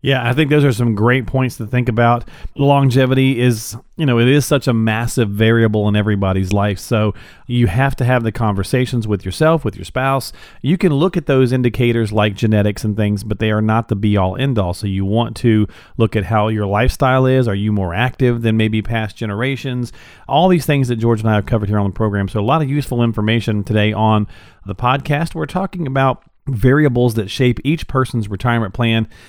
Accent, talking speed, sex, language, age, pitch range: American, 215 wpm, male, English, 40-59, 105-130 Hz